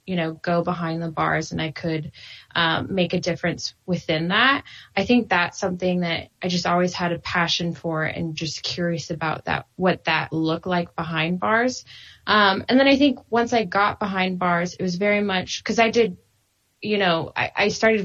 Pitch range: 170-195 Hz